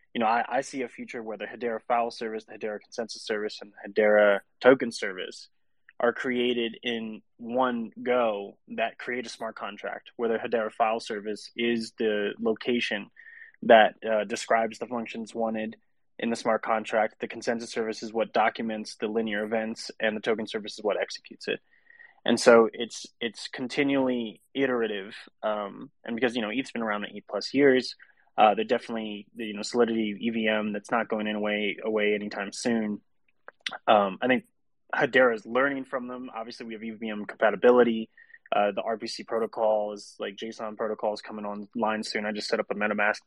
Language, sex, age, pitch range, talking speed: English, male, 20-39, 105-120 Hz, 180 wpm